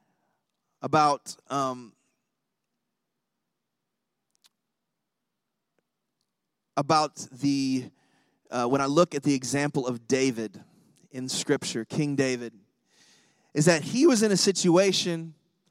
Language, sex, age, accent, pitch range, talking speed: English, male, 30-49, American, 145-195 Hz, 90 wpm